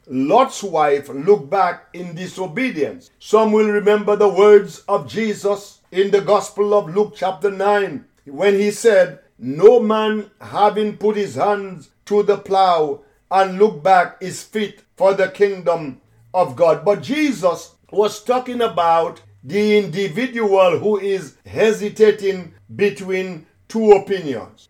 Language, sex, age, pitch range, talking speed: English, male, 50-69, 180-215 Hz, 135 wpm